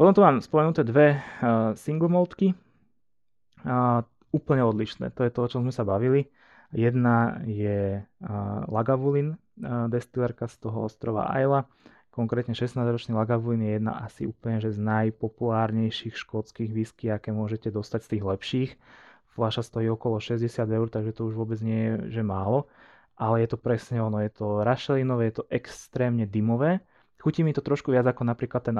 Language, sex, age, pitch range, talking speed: Slovak, male, 20-39, 110-125 Hz, 165 wpm